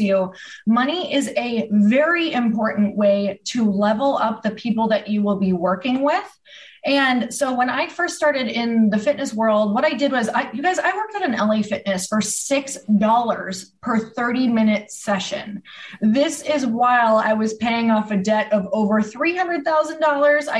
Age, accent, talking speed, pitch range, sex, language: 20-39, American, 170 wpm, 210-270 Hz, female, English